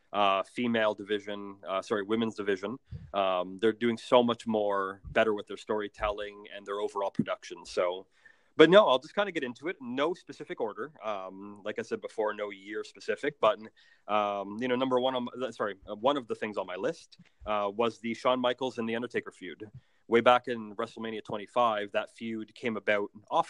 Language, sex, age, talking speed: English, male, 30-49, 190 wpm